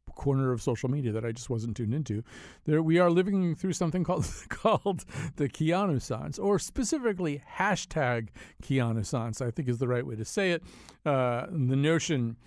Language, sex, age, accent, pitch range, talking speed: English, male, 50-69, American, 125-170 Hz, 185 wpm